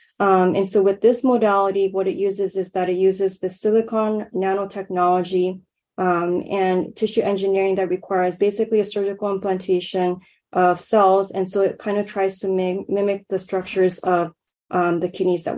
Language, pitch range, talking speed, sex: English, 185-200 Hz, 165 wpm, female